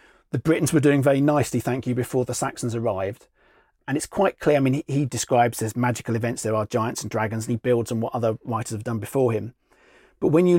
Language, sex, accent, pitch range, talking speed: English, male, British, 120-145 Hz, 245 wpm